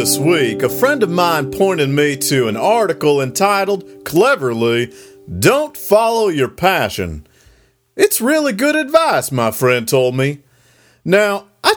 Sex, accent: male, American